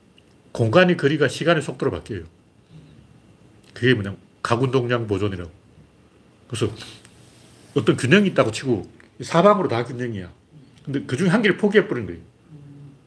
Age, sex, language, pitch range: 40-59, male, Korean, 115-170 Hz